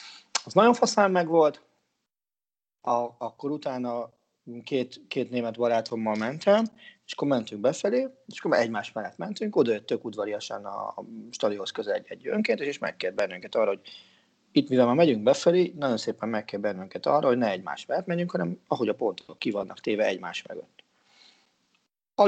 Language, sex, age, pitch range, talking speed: Hungarian, male, 30-49, 110-175 Hz, 160 wpm